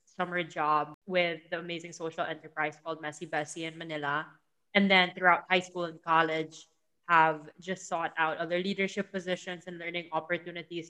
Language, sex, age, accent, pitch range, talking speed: English, female, 20-39, Filipino, 165-195 Hz, 160 wpm